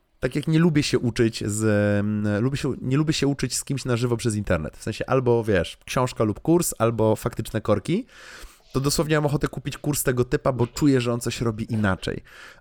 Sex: male